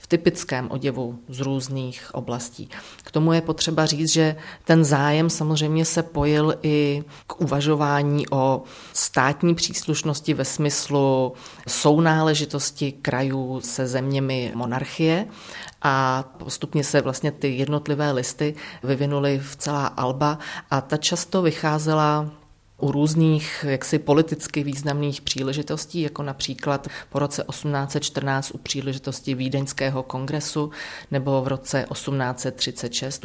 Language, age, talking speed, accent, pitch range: Czech, 30-49, 115 wpm, native, 130-150 Hz